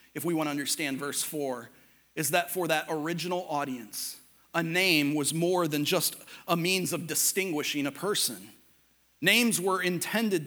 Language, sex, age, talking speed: English, male, 40-59, 160 wpm